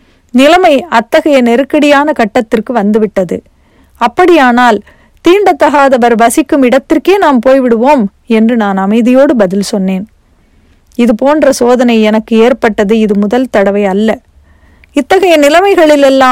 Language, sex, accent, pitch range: Tamil, female, native, 220-280 Hz